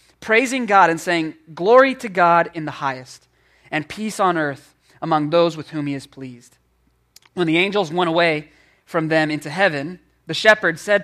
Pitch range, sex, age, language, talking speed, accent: 155-210 Hz, male, 20-39, English, 180 wpm, American